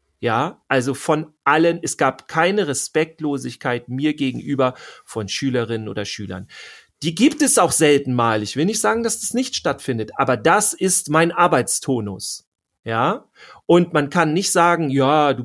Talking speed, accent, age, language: 160 wpm, German, 40-59, German